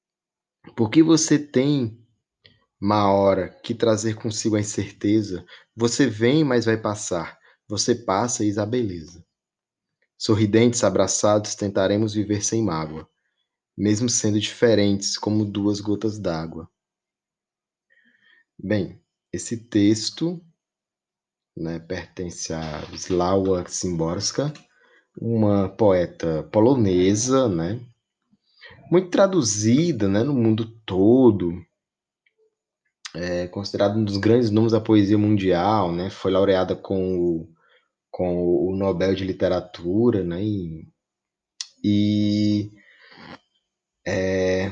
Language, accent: Portuguese, Brazilian